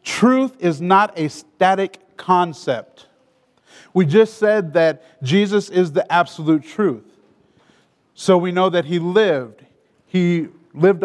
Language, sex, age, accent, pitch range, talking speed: English, male, 40-59, American, 160-205 Hz, 125 wpm